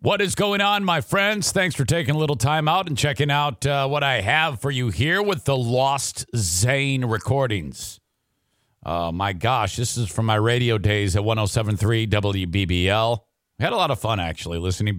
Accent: American